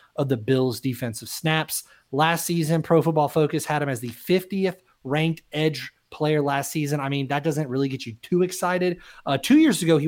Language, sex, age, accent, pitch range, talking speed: English, male, 30-49, American, 125-155 Hz, 200 wpm